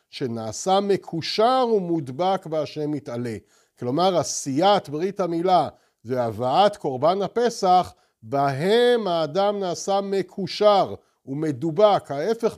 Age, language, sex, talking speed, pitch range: 50-69, Hebrew, male, 85 wpm, 160-200 Hz